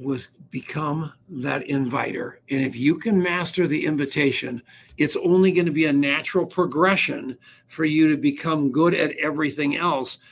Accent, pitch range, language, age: American, 150-185 Hz, English, 60-79